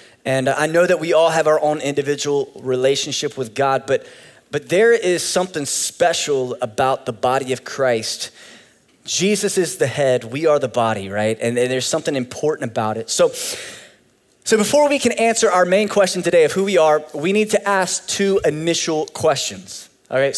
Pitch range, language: 145-190 Hz, English